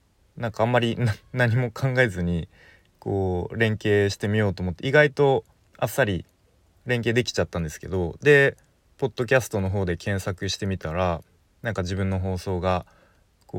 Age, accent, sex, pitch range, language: 20-39, native, male, 90-120 Hz, Japanese